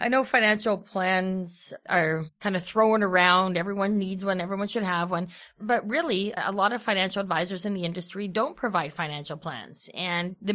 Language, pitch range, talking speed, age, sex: English, 175-220 Hz, 180 wpm, 20-39, female